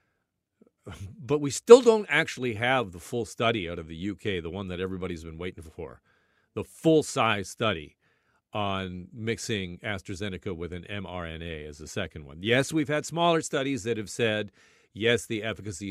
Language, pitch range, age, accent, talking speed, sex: English, 100-145 Hz, 40-59, American, 165 wpm, male